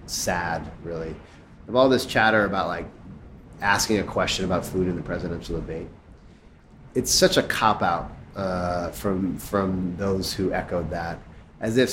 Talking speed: 155 wpm